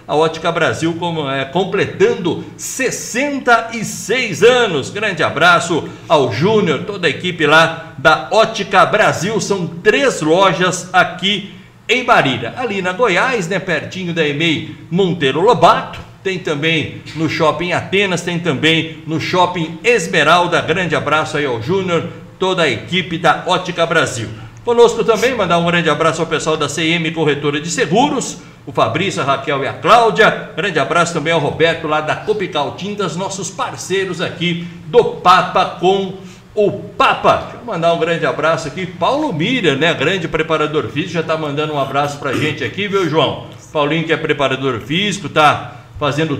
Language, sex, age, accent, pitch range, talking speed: Portuguese, male, 60-79, Brazilian, 150-185 Hz, 155 wpm